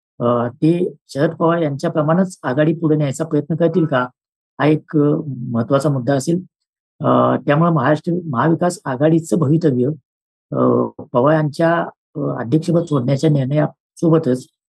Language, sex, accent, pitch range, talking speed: Marathi, female, native, 130-165 Hz, 85 wpm